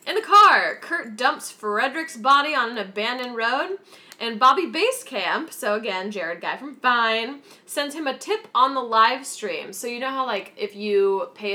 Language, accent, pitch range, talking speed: English, American, 200-280 Hz, 185 wpm